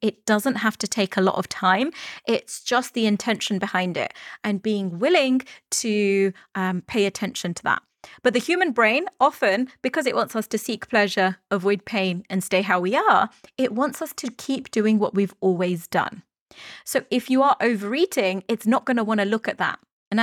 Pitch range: 200-250 Hz